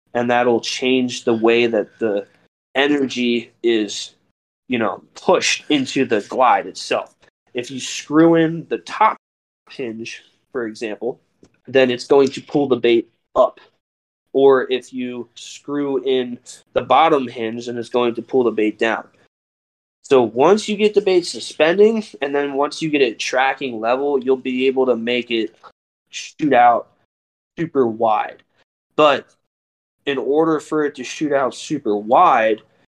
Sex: male